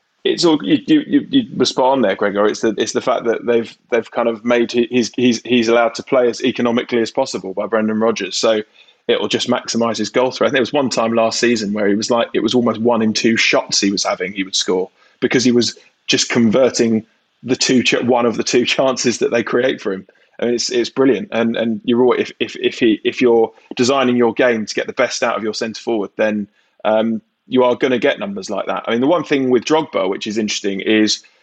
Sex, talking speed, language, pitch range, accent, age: male, 250 wpm, English, 115-130 Hz, British, 20-39